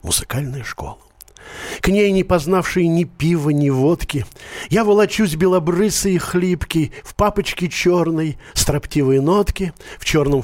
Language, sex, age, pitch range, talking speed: Russian, male, 40-59, 145-190 Hz, 120 wpm